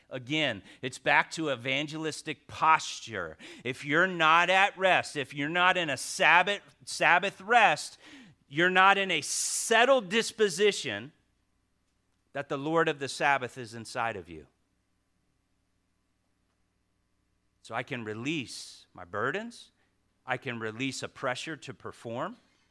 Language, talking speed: English, 125 wpm